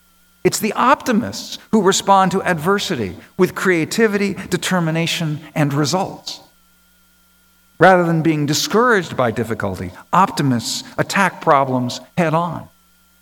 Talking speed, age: 100 wpm, 50-69